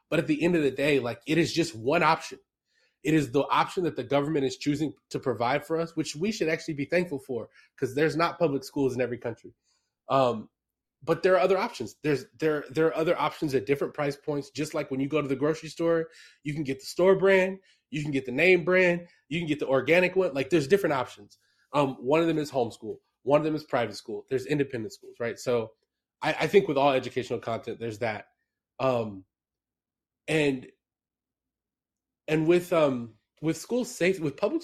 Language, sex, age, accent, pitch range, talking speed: English, male, 20-39, American, 130-165 Hz, 215 wpm